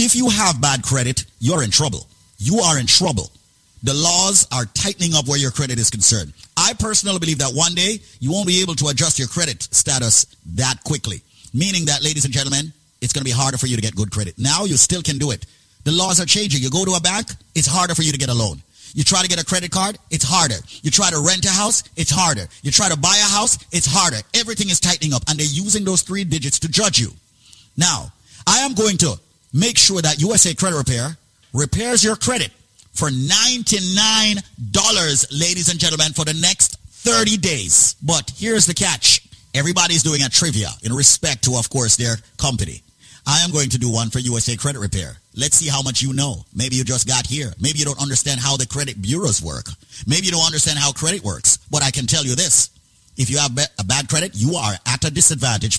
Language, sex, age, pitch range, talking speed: English, male, 30-49, 120-175 Hz, 225 wpm